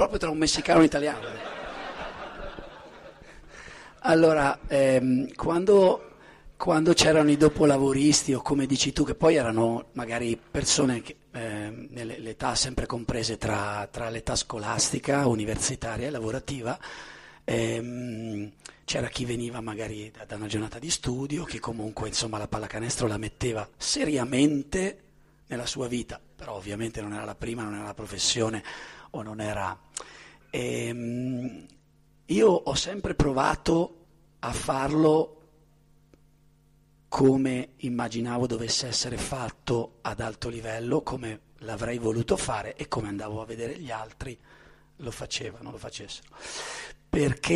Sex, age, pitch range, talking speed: male, 40-59, 110-150 Hz, 125 wpm